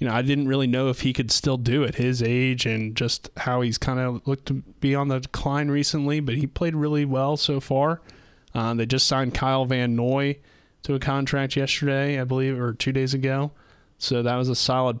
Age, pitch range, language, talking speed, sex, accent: 20-39, 115-130 Hz, English, 225 wpm, male, American